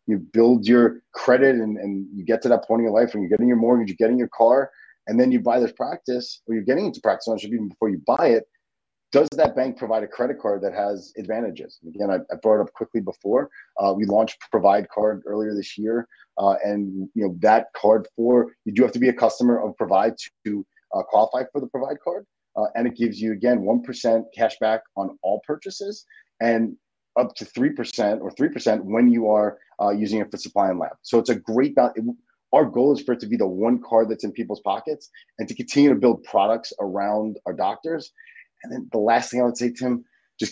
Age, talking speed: 30-49, 235 wpm